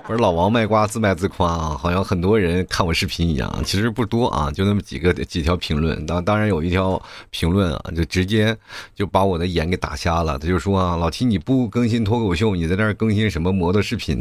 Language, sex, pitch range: Chinese, male, 90-115 Hz